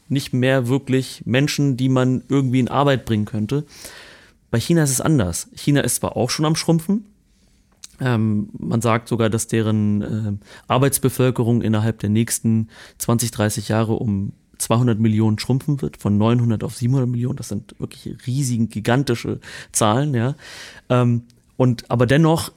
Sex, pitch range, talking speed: male, 110-130 Hz, 150 wpm